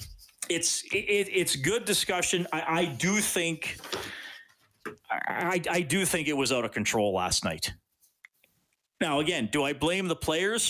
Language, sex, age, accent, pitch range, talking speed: English, male, 40-59, American, 130-190 Hz, 150 wpm